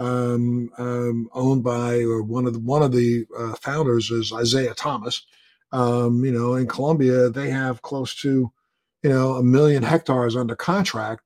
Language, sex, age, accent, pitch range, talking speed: English, male, 50-69, American, 120-140 Hz, 170 wpm